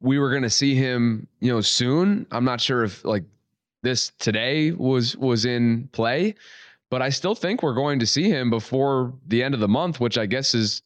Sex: male